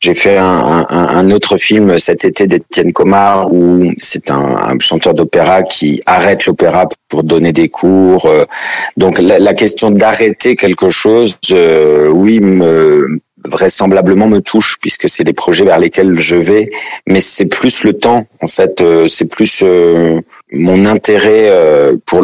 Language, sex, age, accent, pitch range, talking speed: French, male, 40-59, French, 85-105 Hz, 160 wpm